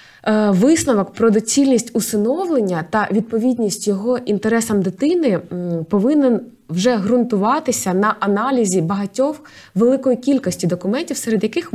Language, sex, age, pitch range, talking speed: Ukrainian, female, 20-39, 200-245 Hz, 100 wpm